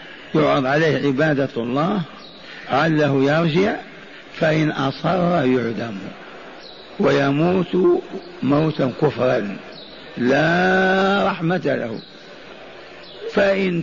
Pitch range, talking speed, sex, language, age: 140-180 Hz, 70 wpm, male, Arabic, 50-69